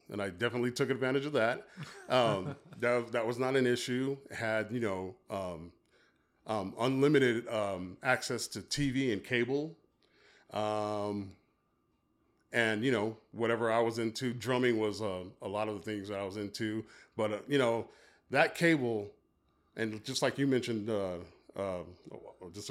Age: 40-59